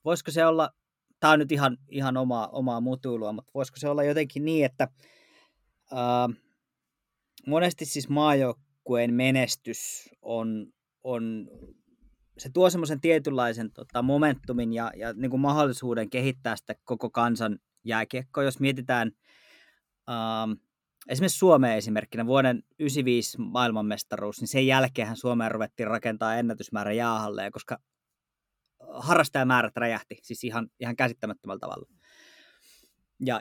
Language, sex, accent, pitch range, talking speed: Finnish, male, native, 115-135 Hz, 120 wpm